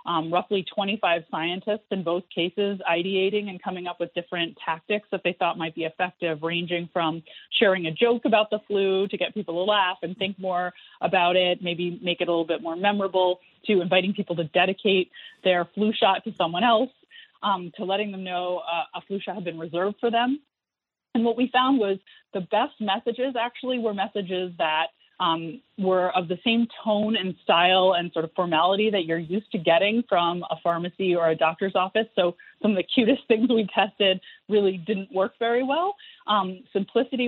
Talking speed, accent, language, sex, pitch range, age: 195 wpm, American, English, female, 175-220 Hz, 30-49